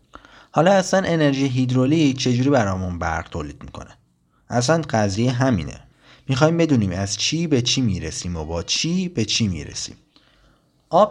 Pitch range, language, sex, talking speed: 110-160 Hz, Persian, male, 140 wpm